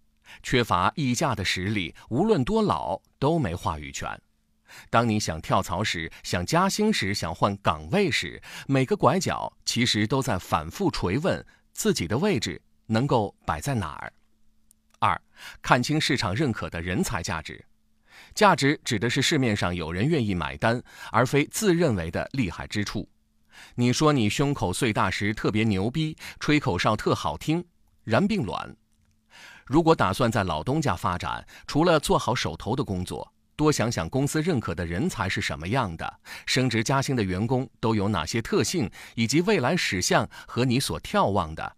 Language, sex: Chinese, male